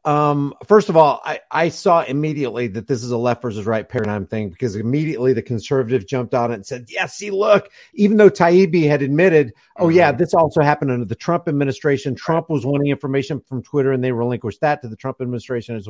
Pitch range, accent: 125-175 Hz, American